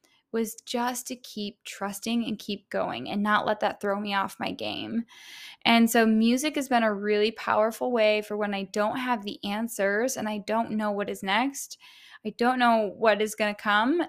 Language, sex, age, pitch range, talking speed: English, female, 10-29, 210-260 Hz, 205 wpm